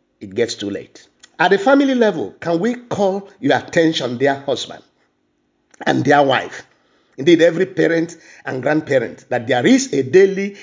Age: 50-69